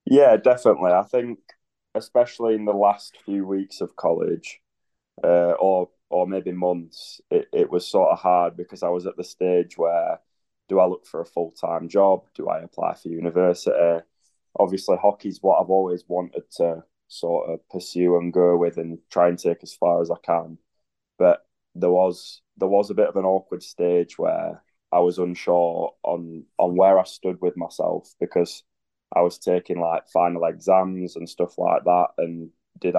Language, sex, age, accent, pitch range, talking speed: English, male, 20-39, British, 85-95 Hz, 180 wpm